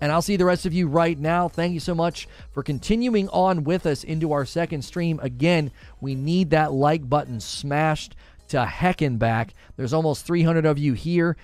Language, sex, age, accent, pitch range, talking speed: English, male, 30-49, American, 125-165 Hz, 200 wpm